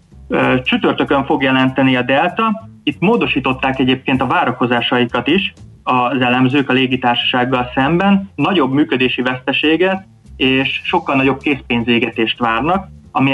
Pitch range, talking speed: 120-140 Hz, 115 wpm